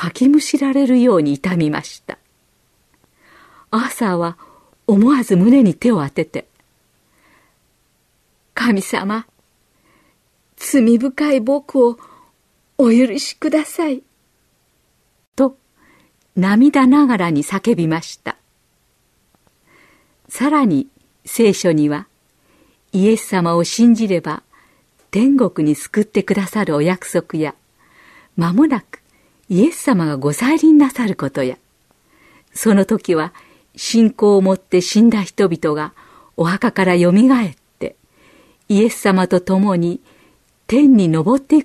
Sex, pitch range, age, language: female, 175-260 Hz, 50-69, Japanese